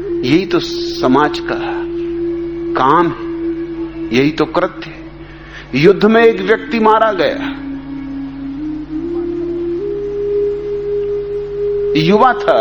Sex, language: male, Hindi